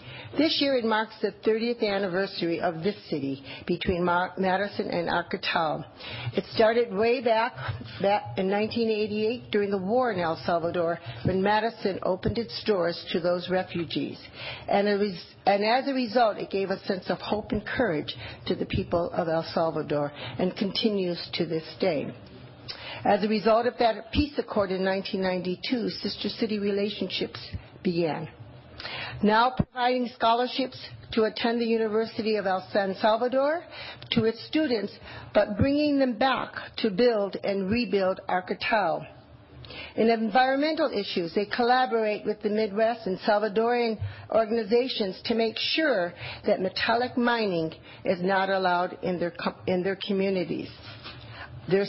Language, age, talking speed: English, 50-69, 140 wpm